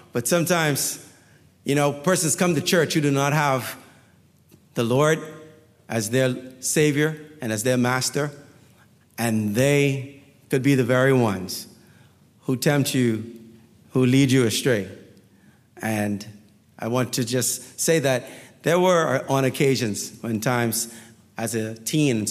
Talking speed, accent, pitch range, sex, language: 140 wpm, American, 115-140 Hz, male, English